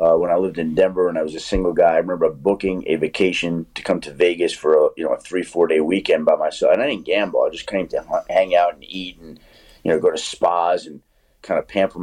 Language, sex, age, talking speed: English, male, 40-59, 275 wpm